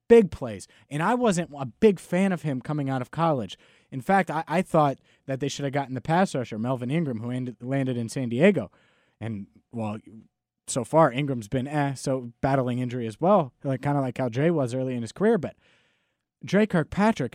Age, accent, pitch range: 30-49, American, 125-175 Hz